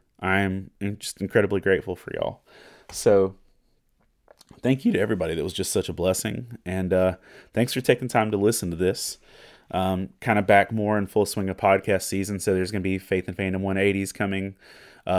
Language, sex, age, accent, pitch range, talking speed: English, male, 30-49, American, 90-100 Hz, 195 wpm